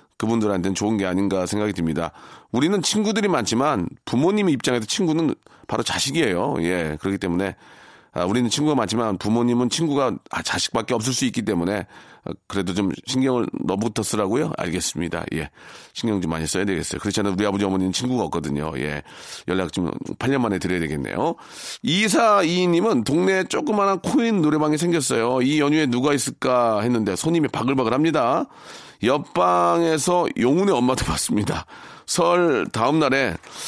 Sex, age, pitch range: male, 40-59, 105-155 Hz